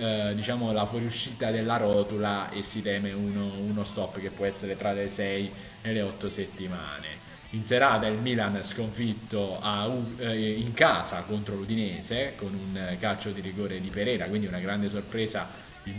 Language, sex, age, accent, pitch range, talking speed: Italian, male, 20-39, native, 100-115 Hz, 170 wpm